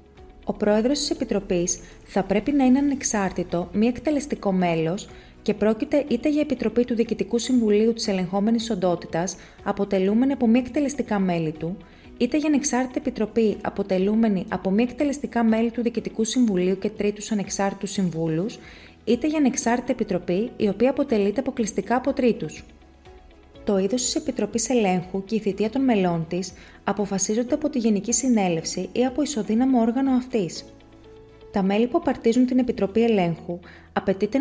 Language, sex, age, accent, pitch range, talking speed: Greek, female, 30-49, native, 190-245 Hz, 145 wpm